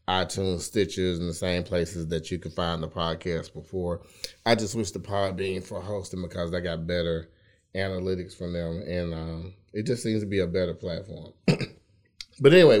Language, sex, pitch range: English, male, 90-110 Hz